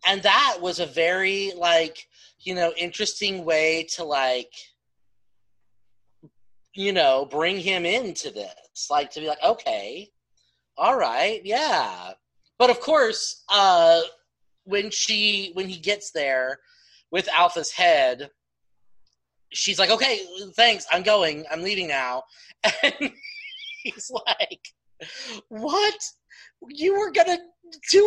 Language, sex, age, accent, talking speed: English, male, 30-49, American, 120 wpm